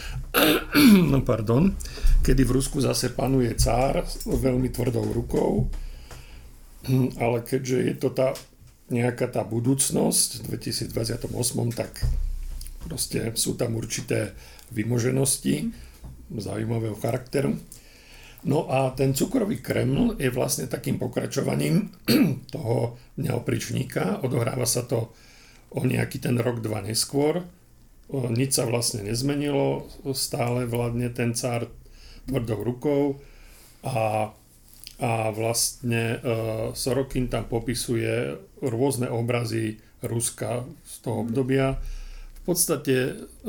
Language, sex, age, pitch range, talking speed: Slovak, male, 50-69, 115-130 Hz, 100 wpm